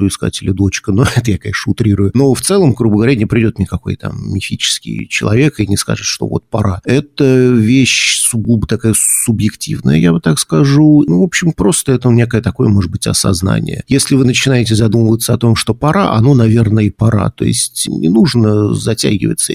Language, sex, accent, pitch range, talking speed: Russian, male, native, 105-125 Hz, 190 wpm